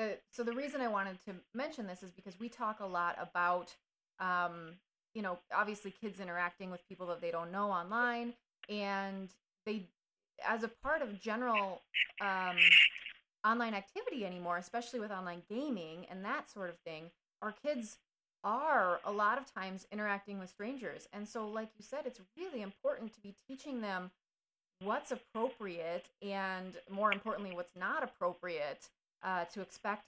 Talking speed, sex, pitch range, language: 160 wpm, female, 180-230 Hz, English